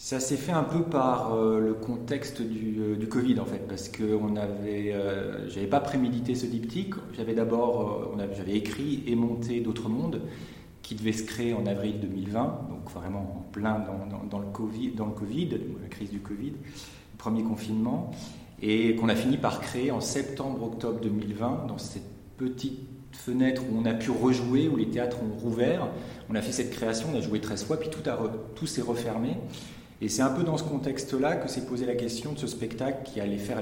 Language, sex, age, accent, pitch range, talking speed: French, male, 40-59, French, 105-130 Hz, 210 wpm